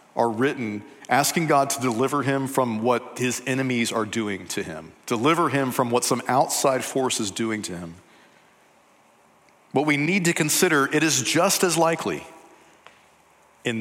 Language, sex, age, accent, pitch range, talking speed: English, male, 40-59, American, 125-150 Hz, 160 wpm